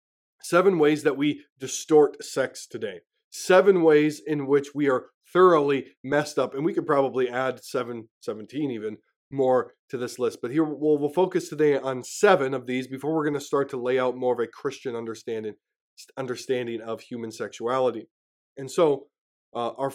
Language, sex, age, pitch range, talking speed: English, male, 20-39, 130-175 Hz, 175 wpm